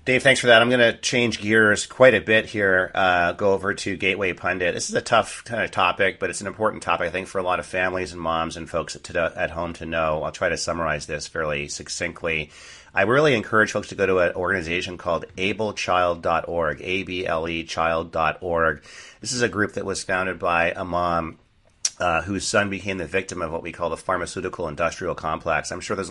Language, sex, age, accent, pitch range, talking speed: English, male, 40-59, American, 85-105 Hz, 210 wpm